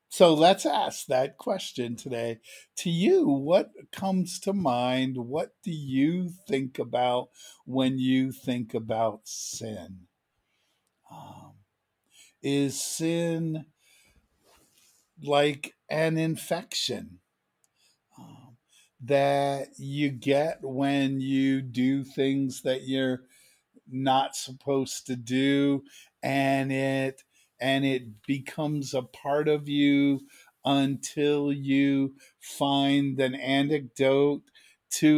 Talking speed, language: 95 wpm, English